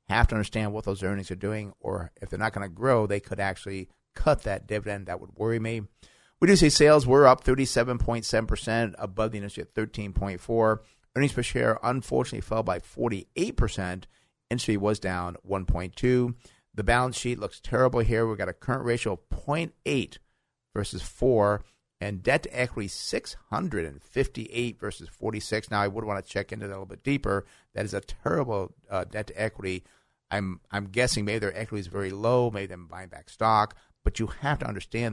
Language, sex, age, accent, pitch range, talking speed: English, male, 50-69, American, 100-120 Hz, 180 wpm